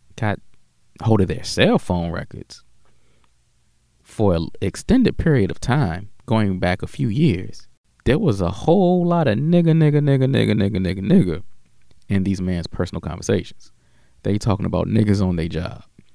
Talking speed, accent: 165 wpm, American